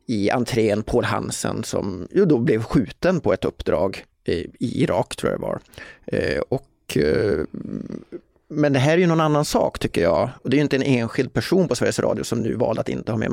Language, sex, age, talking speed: Swedish, male, 30-49, 210 wpm